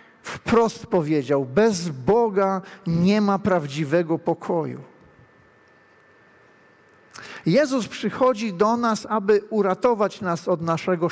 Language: Polish